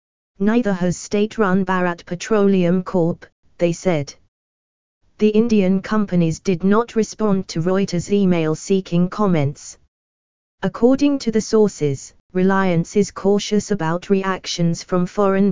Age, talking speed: 20-39, 110 wpm